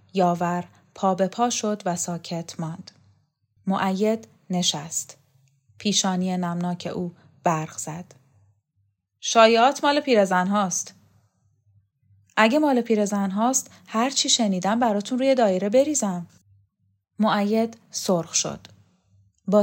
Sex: female